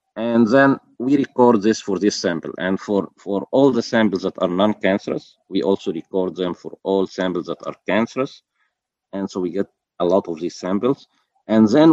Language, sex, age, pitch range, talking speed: English, male, 50-69, 95-110 Hz, 190 wpm